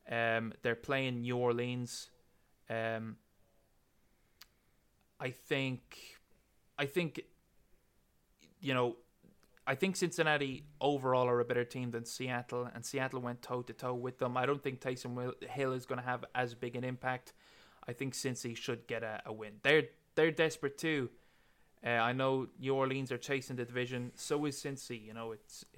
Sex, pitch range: male, 115-135 Hz